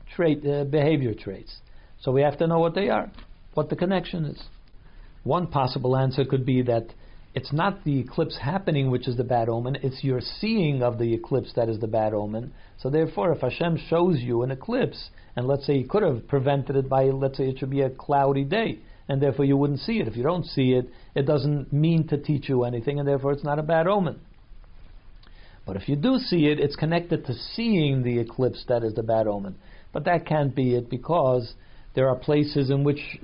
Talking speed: 215 wpm